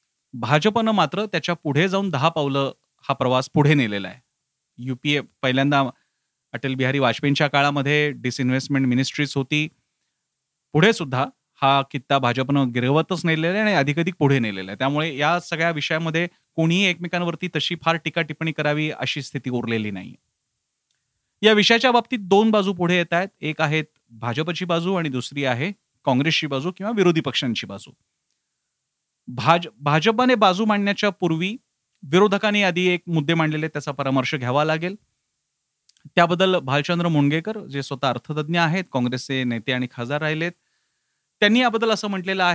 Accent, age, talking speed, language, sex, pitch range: native, 30-49, 100 wpm, Marathi, male, 135-175 Hz